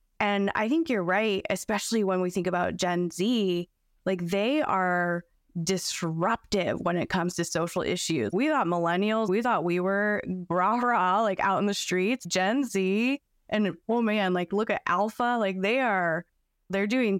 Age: 20-39